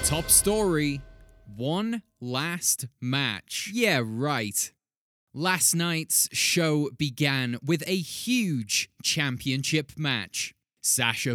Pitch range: 130-200 Hz